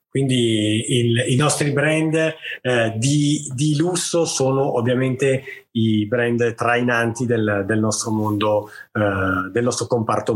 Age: 30-49